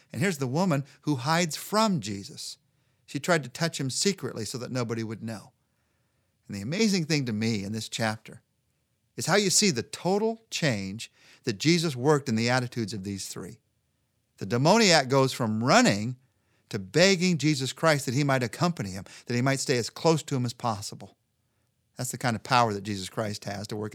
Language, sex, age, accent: English, male, 50-69, American